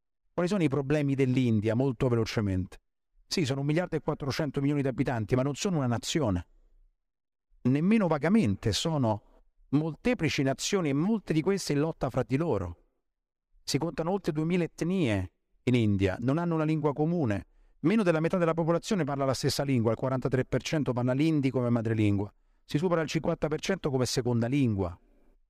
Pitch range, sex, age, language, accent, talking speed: 125-155 Hz, male, 50-69, Italian, native, 160 wpm